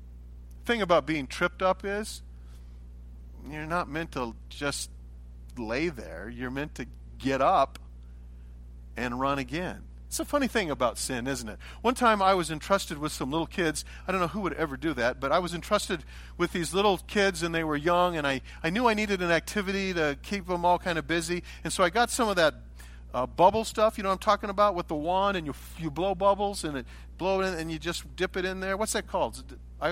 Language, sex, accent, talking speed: English, male, American, 225 wpm